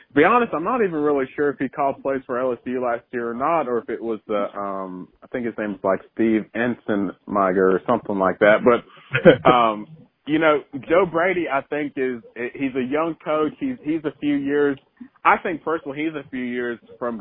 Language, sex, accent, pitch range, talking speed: English, male, American, 110-145 Hz, 225 wpm